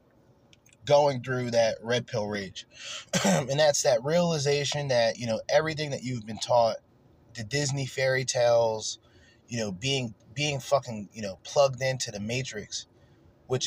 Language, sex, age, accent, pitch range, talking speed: English, male, 20-39, American, 115-145 Hz, 150 wpm